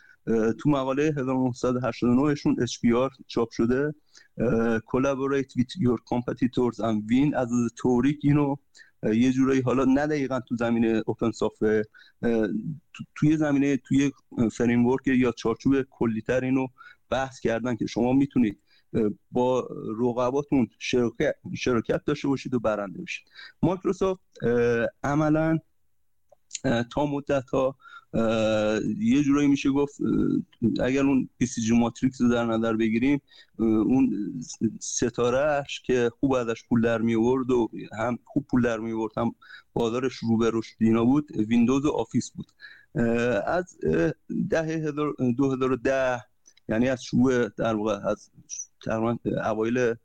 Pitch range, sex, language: 115-140 Hz, male, Persian